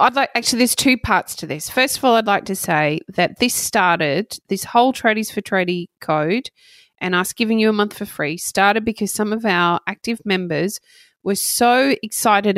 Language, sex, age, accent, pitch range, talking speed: English, female, 30-49, Australian, 170-215 Hz, 200 wpm